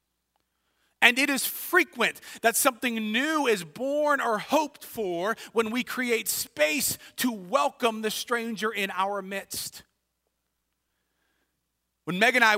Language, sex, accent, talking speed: English, male, American, 130 wpm